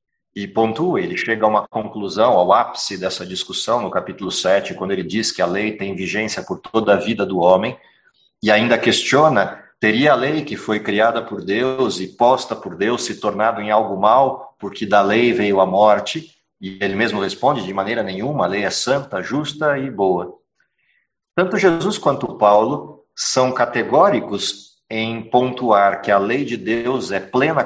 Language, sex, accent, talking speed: Portuguese, male, Brazilian, 180 wpm